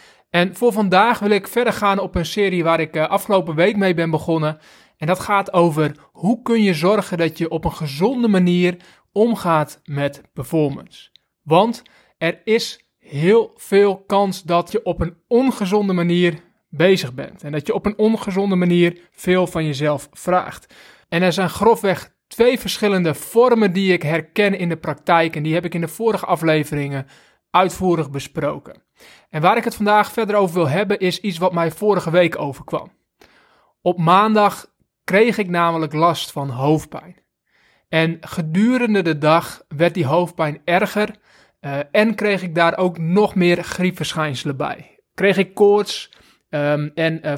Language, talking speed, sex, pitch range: Dutch, 165 wpm, male, 160-200 Hz